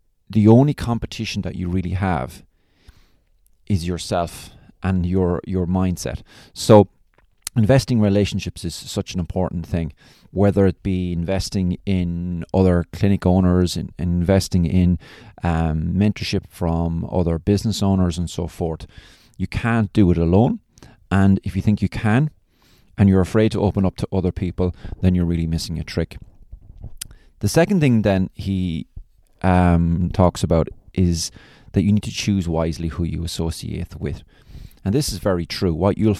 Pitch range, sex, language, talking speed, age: 85-100 Hz, male, English, 155 wpm, 30-49